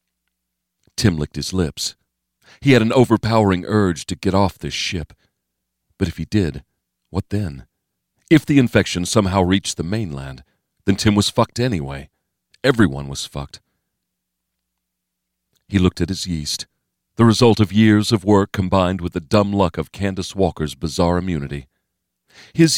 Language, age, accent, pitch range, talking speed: English, 40-59, American, 70-105 Hz, 150 wpm